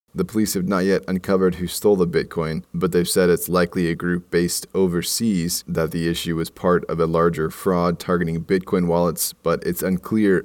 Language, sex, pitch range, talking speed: English, male, 85-95 Hz, 195 wpm